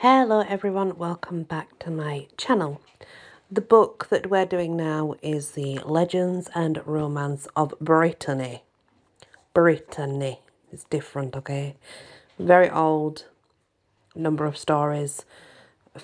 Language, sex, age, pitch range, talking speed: English, female, 40-59, 150-200 Hz, 110 wpm